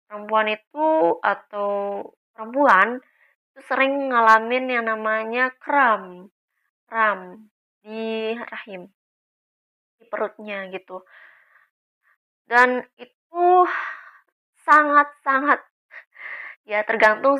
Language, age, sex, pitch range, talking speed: Indonesian, 20-39, female, 205-265 Hz, 70 wpm